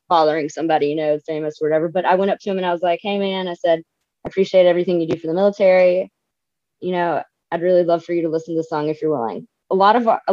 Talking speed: 275 wpm